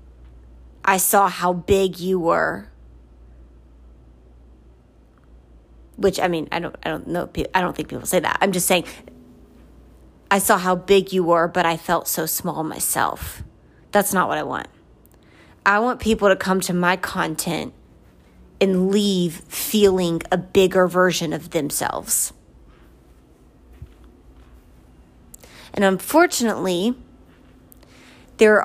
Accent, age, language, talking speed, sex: American, 20-39, English, 125 wpm, female